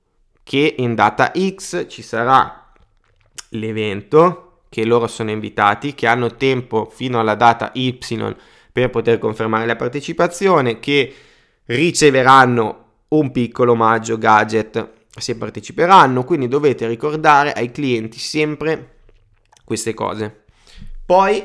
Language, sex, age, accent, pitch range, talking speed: Italian, male, 20-39, native, 110-125 Hz, 110 wpm